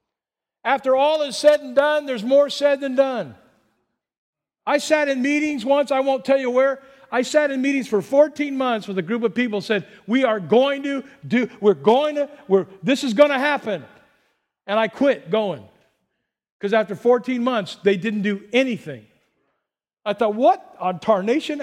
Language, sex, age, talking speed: English, male, 50-69, 180 wpm